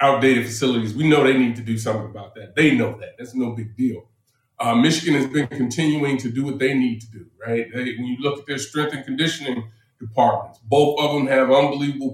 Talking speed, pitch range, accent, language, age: 225 wpm, 125-155 Hz, American, English, 30-49